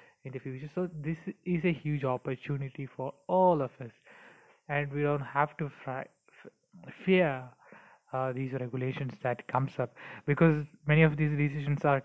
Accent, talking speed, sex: native, 165 wpm, male